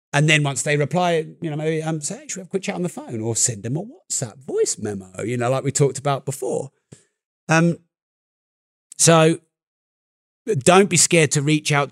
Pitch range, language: 125-160 Hz, English